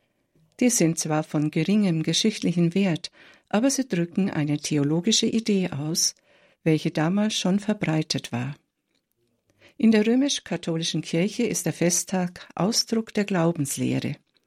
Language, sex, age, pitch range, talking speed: German, female, 60-79, 160-215 Hz, 120 wpm